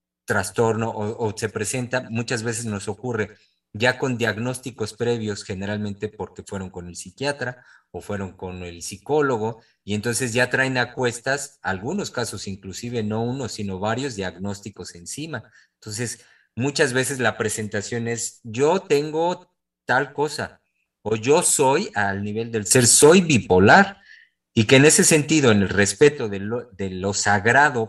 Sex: male